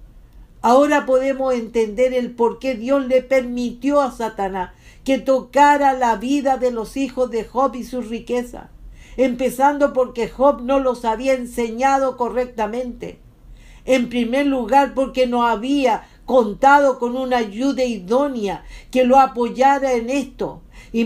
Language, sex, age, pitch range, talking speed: English, female, 50-69, 240-280 Hz, 135 wpm